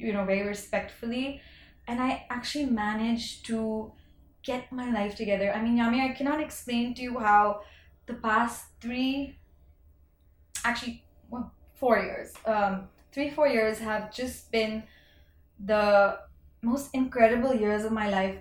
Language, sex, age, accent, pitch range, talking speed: English, female, 20-39, Indian, 205-255 Hz, 140 wpm